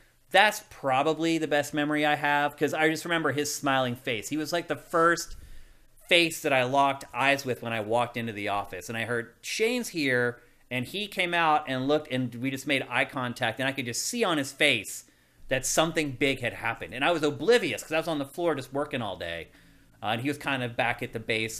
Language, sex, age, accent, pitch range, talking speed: English, male, 30-49, American, 130-170 Hz, 235 wpm